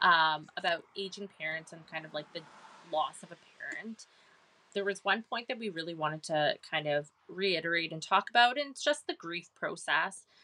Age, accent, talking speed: 20-39, American, 195 wpm